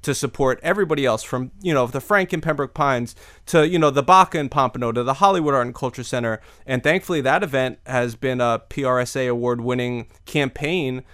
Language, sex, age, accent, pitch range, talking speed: English, male, 30-49, American, 115-145 Hz, 200 wpm